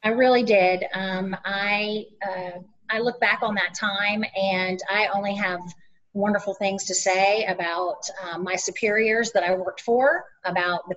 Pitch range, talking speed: 185-215 Hz, 165 wpm